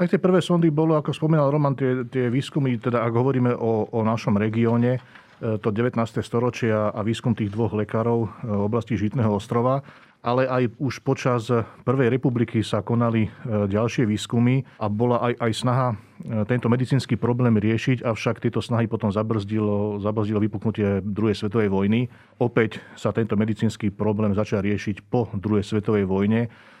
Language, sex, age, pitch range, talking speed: Slovak, male, 40-59, 105-120 Hz, 155 wpm